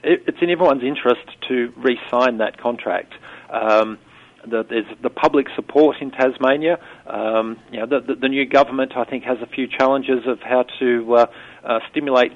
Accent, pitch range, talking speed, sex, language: Australian, 115-130 Hz, 175 wpm, male, English